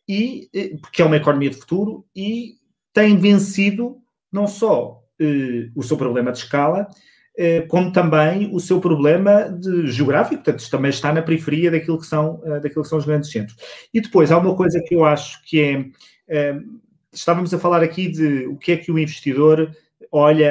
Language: Portuguese